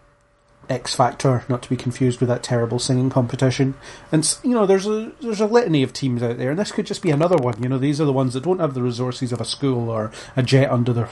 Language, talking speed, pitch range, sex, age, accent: English, 265 wpm, 120-145 Hz, male, 30-49, British